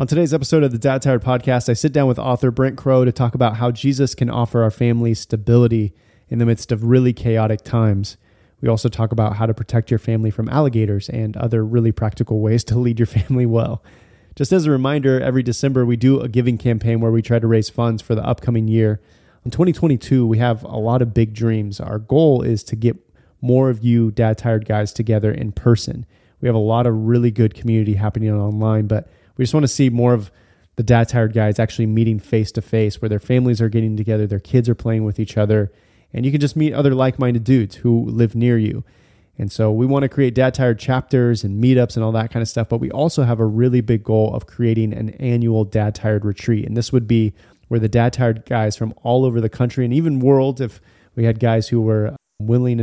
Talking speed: 225 wpm